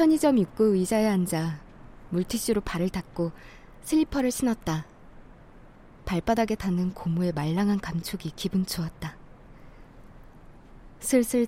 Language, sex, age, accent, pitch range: Korean, female, 20-39, native, 185-255 Hz